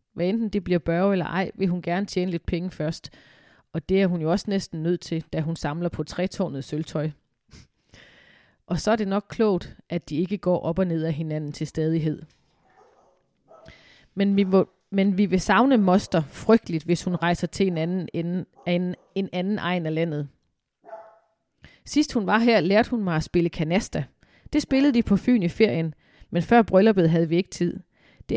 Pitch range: 170-205 Hz